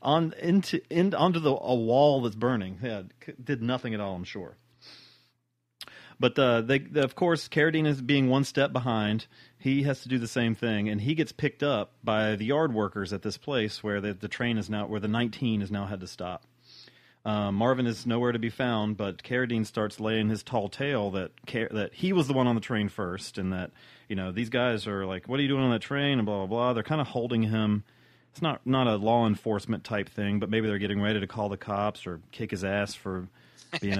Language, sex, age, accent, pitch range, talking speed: English, male, 30-49, American, 105-130 Hz, 230 wpm